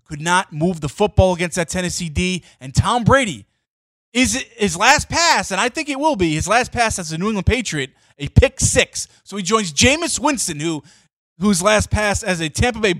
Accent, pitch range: American, 135-190 Hz